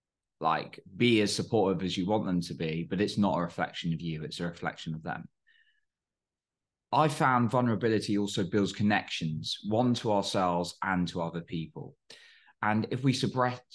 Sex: male